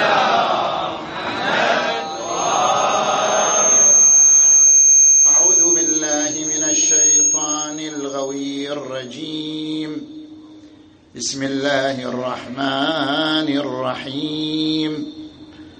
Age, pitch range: 50-69, 130-155 Hz